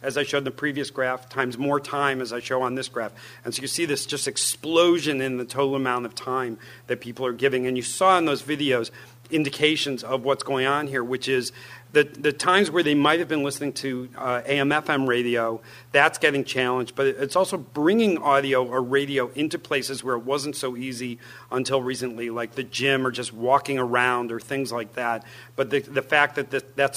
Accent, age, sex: American, 40-59, male